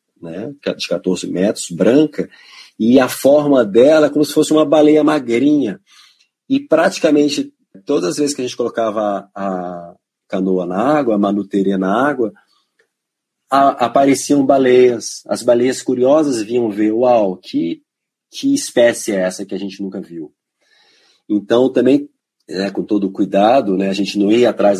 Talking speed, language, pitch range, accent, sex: 155 wpm, Portuguese, 100-155 Hz, Brazilian, male